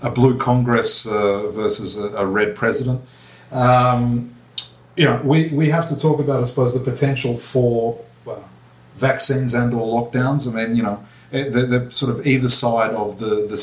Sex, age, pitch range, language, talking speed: male, 40-59, 115-135 Hz, English, 180 wpm